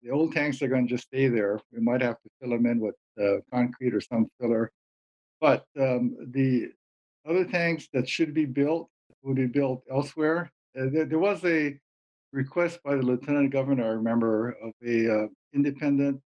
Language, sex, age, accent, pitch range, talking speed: English, male, 60-79, American, 120-145 Hz, 185 wpm